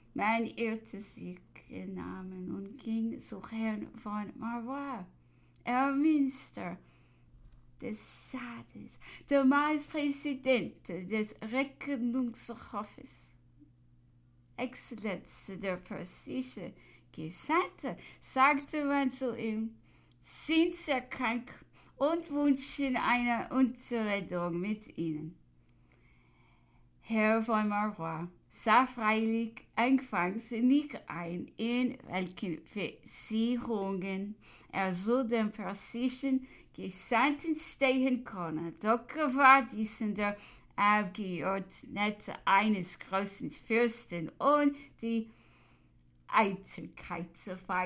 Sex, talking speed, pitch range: female, 85 wpm, 175-250 Hz